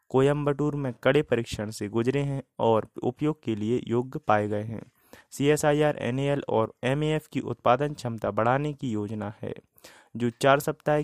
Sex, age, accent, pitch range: male, 20-39, native, 110-140 Hz